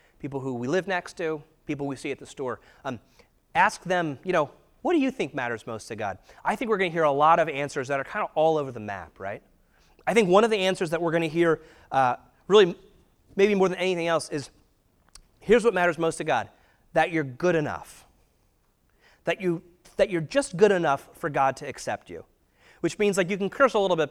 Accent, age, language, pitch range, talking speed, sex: American, 30-49, English, 145-195 Hz, 230 wpm, male